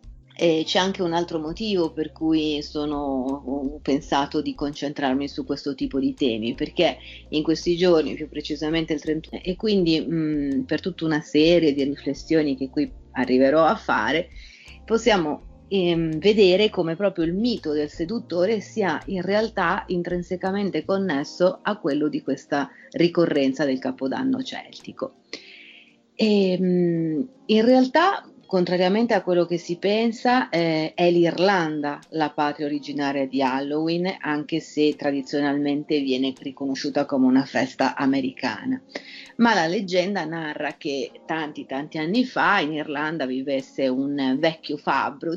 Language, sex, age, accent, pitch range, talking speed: Italian, female, 30-49, native, 145-195 Hz, 135 wpm